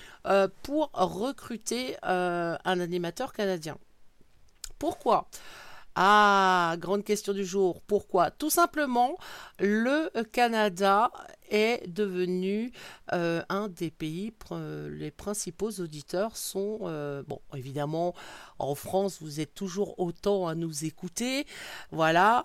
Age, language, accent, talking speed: 50-69, French, French, 110 wpm